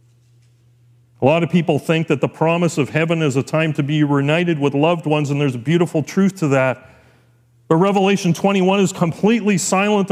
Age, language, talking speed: 40-59, English, 190 wpm